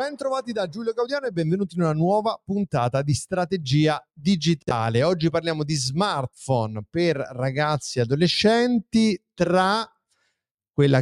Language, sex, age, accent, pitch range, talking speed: Italian, male, 30-49, native, 130-175 Hz, 130 wpm